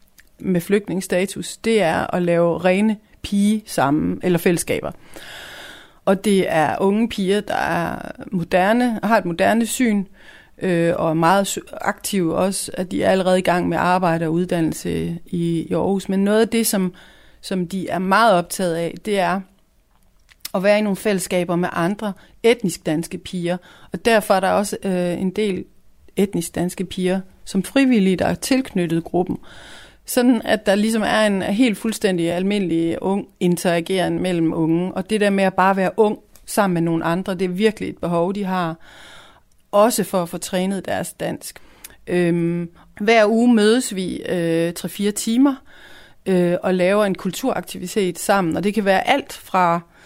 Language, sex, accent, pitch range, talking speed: Danish, female, native, 175-205 Hz, 170 wpm